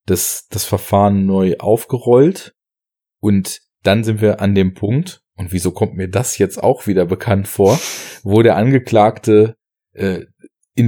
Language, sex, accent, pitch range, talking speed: German, male, German, 95-115 Hz, 150 wpm